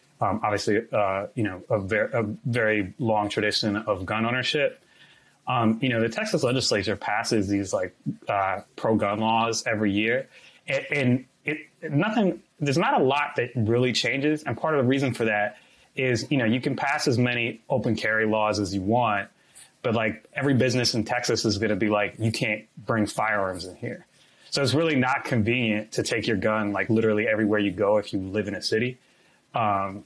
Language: English